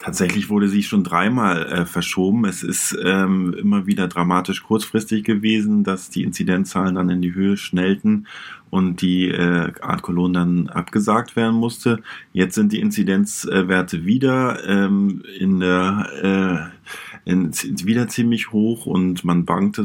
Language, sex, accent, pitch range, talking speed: German, male, German, 95-135 Hz, 145 wpm